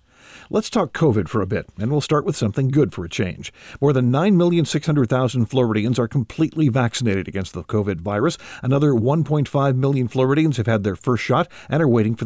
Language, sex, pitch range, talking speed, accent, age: English, male, 110-155 Hz, 190 wpm, American, 50-69